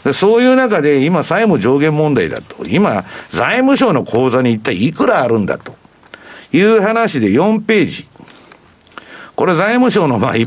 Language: Japanese